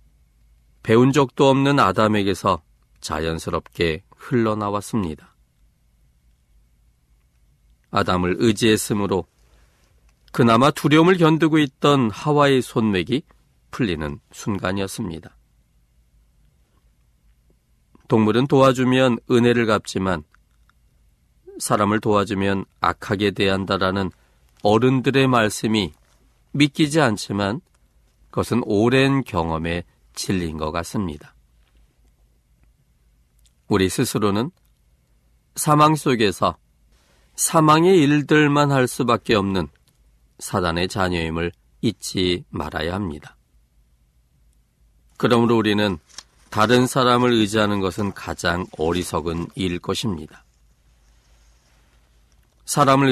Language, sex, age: Korean, male, 40-59